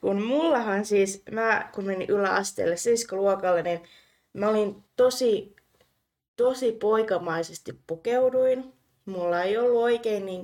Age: 20-39